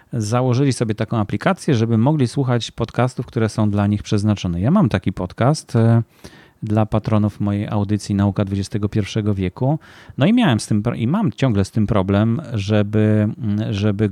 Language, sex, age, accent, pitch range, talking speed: Polish, male, 40-59, native, 105-120 Hz, 155 wpm